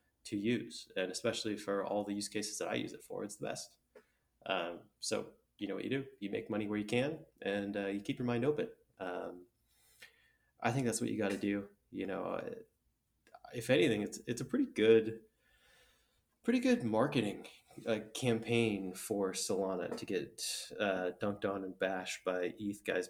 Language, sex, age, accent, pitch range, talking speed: English, male, 20-39, American, 95-115 Hz, 185 wpm